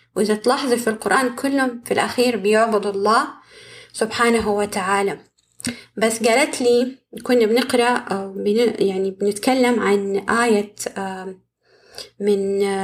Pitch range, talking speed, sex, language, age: 205-245 Hz, 100 wpm, female, Arabic, 20-39